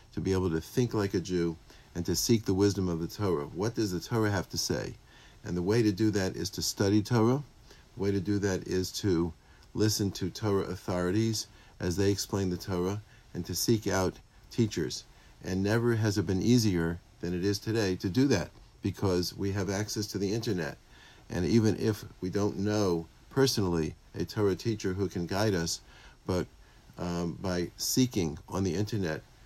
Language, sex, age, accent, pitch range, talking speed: English, male, 50-69, American, 90-105 Hz, 195 wpm